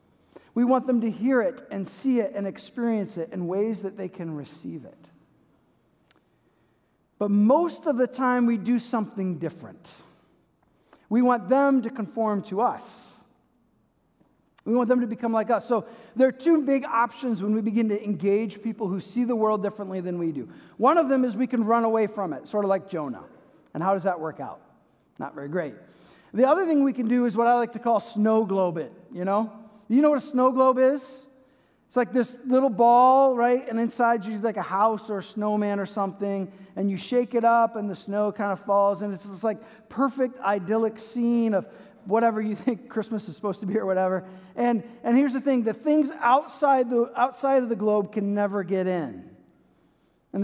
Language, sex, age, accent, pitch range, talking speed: English, male, 40-59, American, 200-245 Hz, 205 wpm